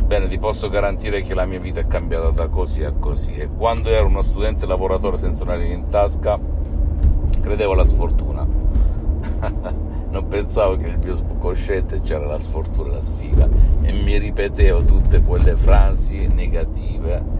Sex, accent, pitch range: male, native, 75-95 Hz